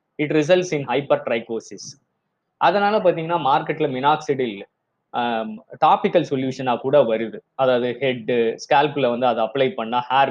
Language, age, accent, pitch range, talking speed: Tamil, 20-39, native, 120-150 Hz, 135 wpm